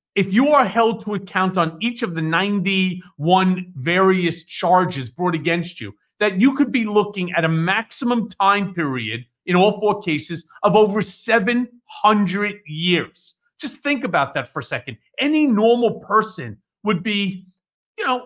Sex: male